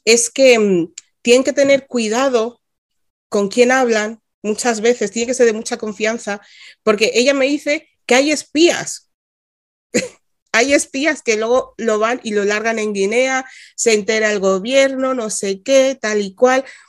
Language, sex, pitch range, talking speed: Spanish, female, 195-255 Hz, 160 wpm